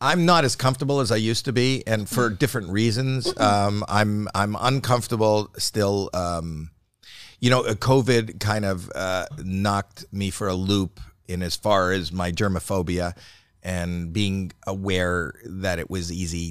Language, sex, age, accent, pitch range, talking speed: English, male, 50-69, American, 95-115 Hz, 155 wpm